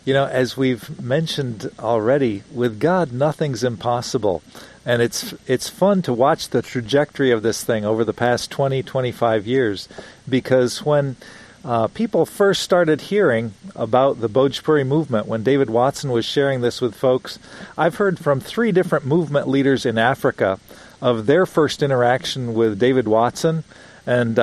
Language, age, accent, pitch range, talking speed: English, 50-69, American, 125-170 Hz, 155 wpm